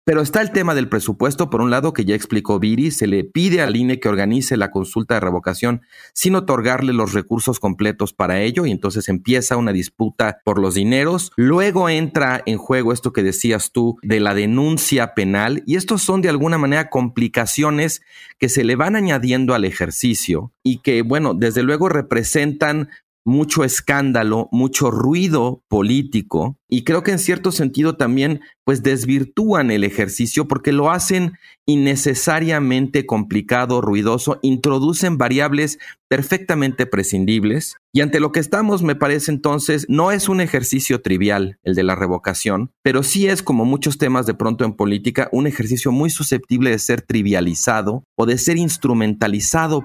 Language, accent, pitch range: Spanish, Mexican, 110-150 Hz